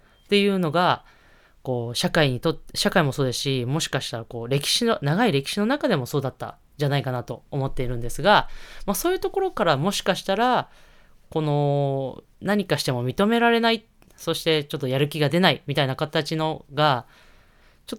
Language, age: Japanese, 20-39